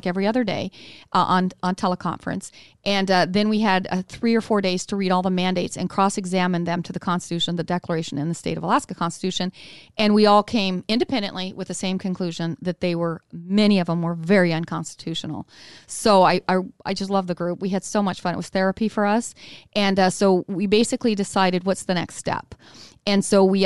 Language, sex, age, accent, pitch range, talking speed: English, female, 40-59, American, 175-200 Hz, 215 wpm